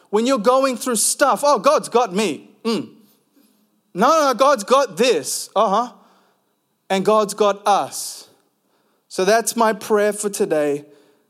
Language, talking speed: English, 150 wpm